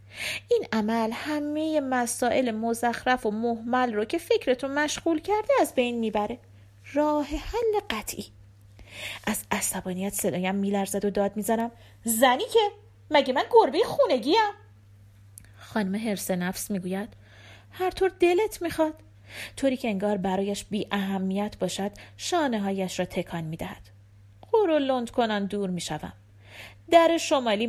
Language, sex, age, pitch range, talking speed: Persian, female, 30-49, 170-275 Hz, 130 wpm